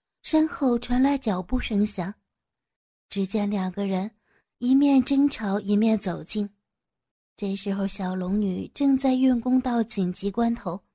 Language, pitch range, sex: Chinese, 200-235 Hz, female